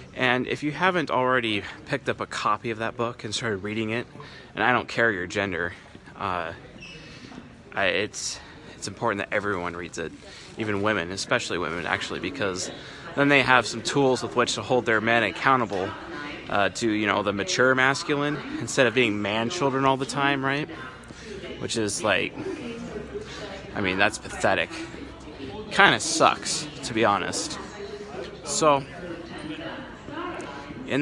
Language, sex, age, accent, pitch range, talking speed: English, male, 20-39, American, 110-140 Hz, 155 wpm